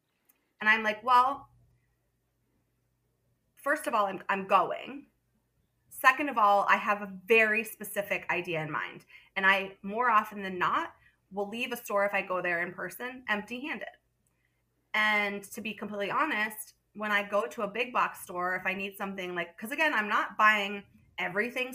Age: 20-39